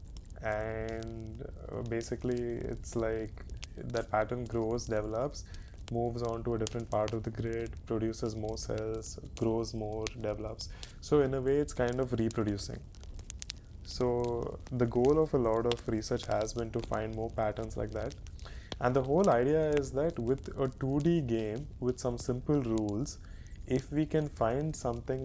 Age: 20-39